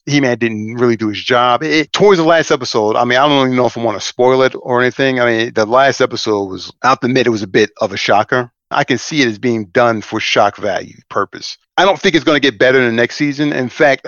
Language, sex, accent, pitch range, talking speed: English, male, American, 115-135 Hz, 275 wpm